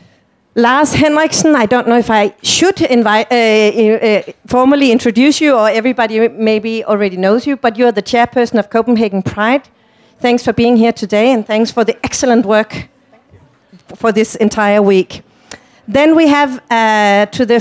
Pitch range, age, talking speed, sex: 220-275 Hz, 40-59, 165 wpm, female